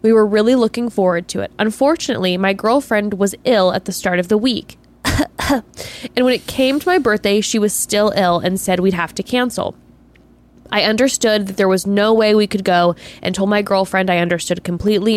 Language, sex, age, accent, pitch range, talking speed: English, female, 10-29, American, 185-240 Hz, 205 wpm